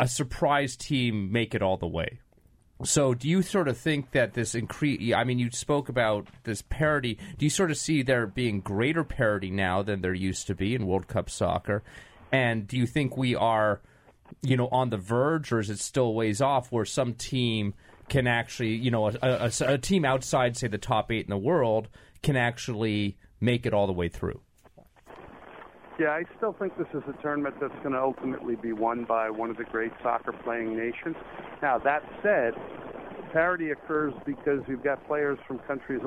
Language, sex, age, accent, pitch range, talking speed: English, male, 30-49, American, 115-145 Hz, 200 wpm